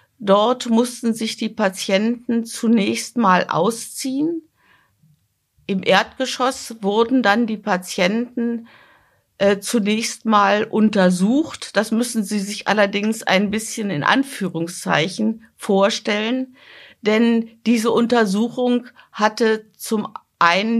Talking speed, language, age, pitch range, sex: 100 wpm, German, 50-69, 195-235 Hz, female